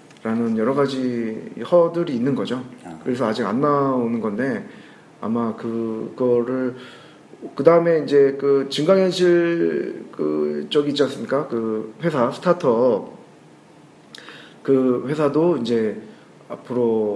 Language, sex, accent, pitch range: Korean, male, native, 110-150 Hz